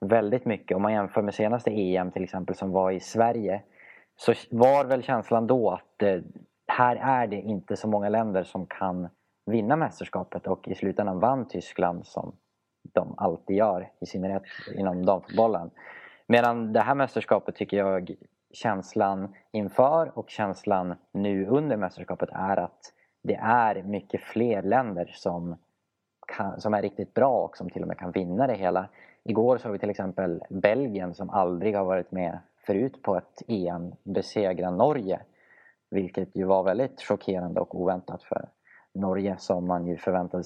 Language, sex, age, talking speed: English, male, 20-39, 160 wpm